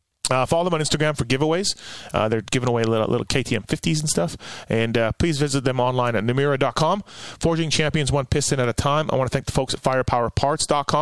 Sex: male